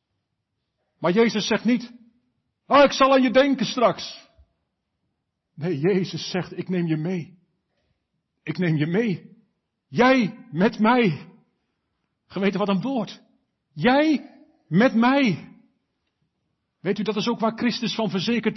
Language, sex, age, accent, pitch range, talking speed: Dutch, male, 50-69, Dutch, 195-245 Hz, 135 wpm